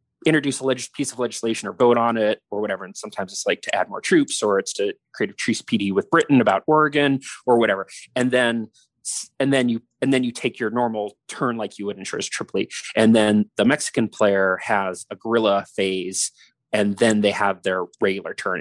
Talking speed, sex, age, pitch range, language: 215 wpm, male, 30-49, 100-120 Hz, English